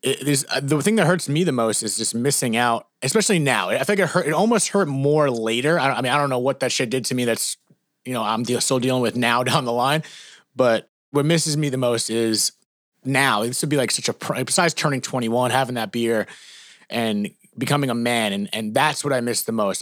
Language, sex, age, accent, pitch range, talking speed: English, male, 30-49, American, 115-145 Hz, 240 wpm